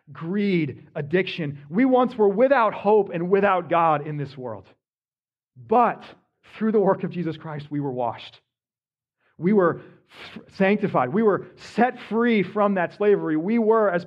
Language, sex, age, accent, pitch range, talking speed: English, male, 40-59, American, 150-215 Hz, 155 wpm